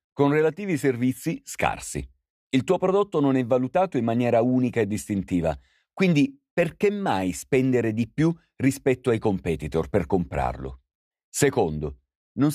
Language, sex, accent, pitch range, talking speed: Italian, male, native, 90-140 Hz, 135 wpm